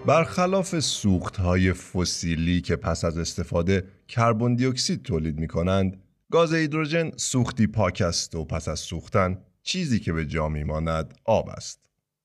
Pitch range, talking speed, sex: 85-125 Hz, 140 wpm, male